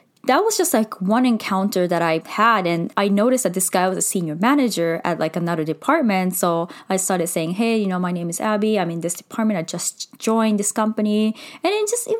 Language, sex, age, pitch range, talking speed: English, female, 20-39, 185-245 Hz, 230 wpm